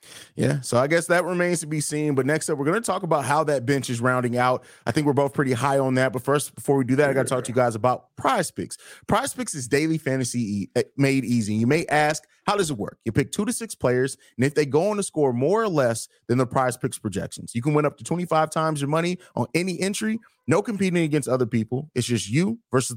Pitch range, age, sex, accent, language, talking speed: 125-175 Hz, 30-49, male, American, English, 270 wpm